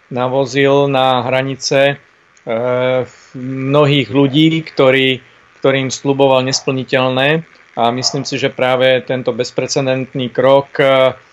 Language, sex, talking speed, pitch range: Slovak, male, 90 wpm, 125-140 Hz